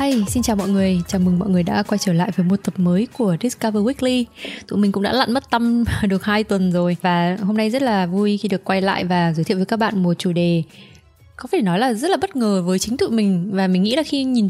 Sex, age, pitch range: female, 20-39, 185-230 Hz